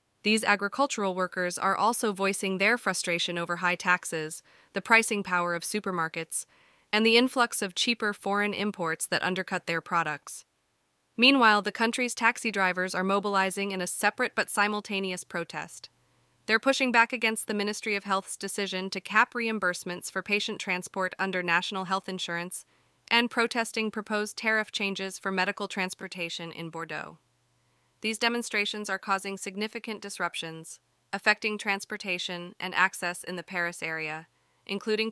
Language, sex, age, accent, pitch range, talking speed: English, female, 20-39, American, 180-215 Hz, 145 wpm